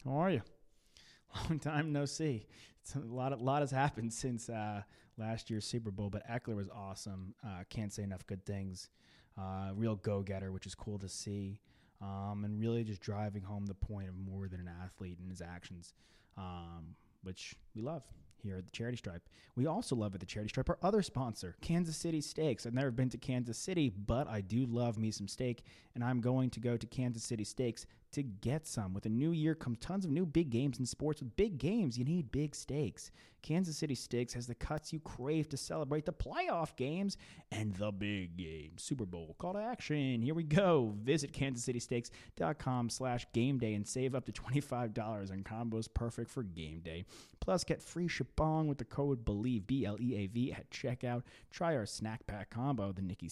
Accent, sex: American, male